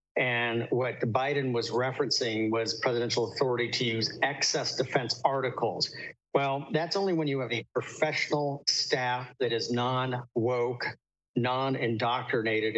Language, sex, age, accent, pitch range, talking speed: English, male, 50-69, American, 120-145 Hz, 125 wpm